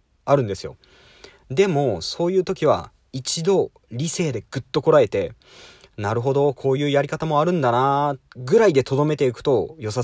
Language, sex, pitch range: Japanese, male, 100-170 Hz